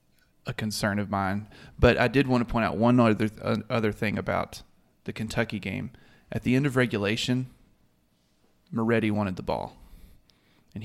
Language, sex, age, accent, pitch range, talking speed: English, male, 30-49, American, 100-115 Hz, 165 wpm